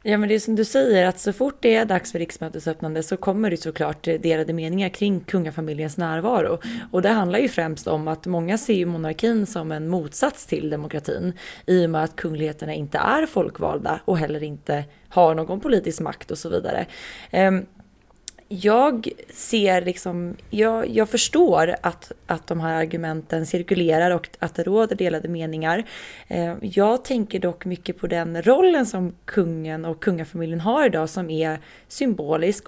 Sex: female